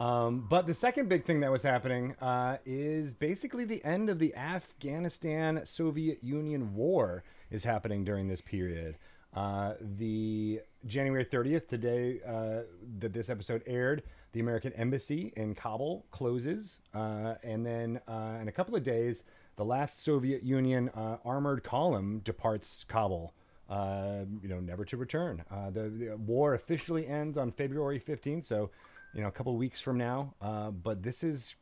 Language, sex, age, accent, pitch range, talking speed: English, male, 30-49, American, 105-140 Hz, 165 wpm